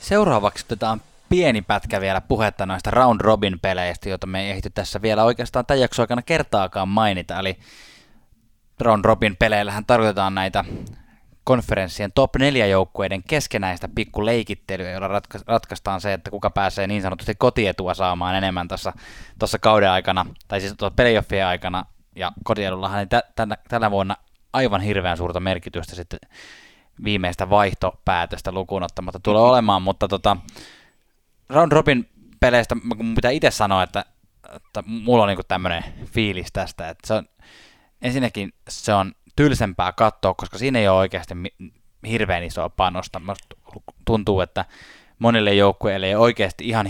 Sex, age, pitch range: male, 20-39, 95-110 Hz